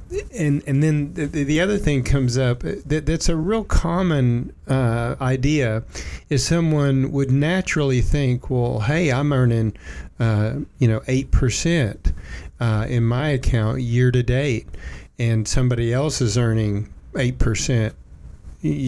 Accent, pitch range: American, 115-145 Hz